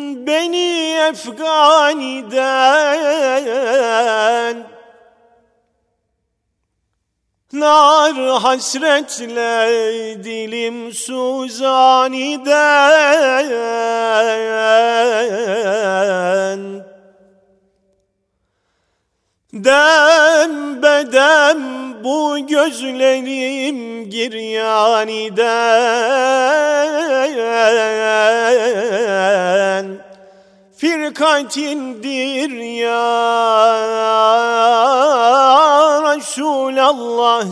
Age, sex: 40-59, male